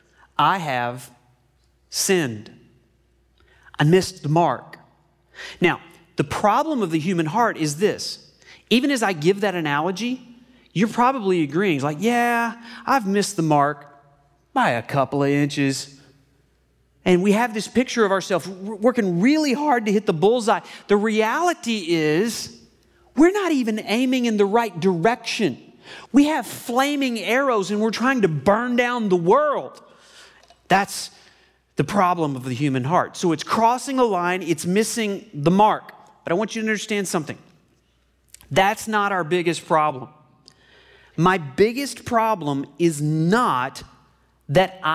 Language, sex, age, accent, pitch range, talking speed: English, male, 30-49, American, 145-220 Hz, 145 wpm